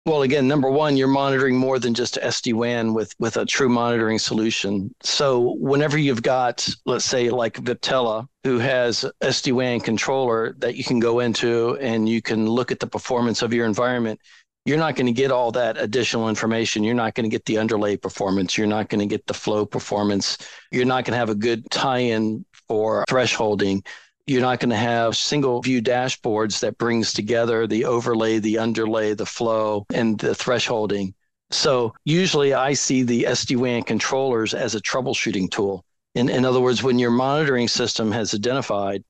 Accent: American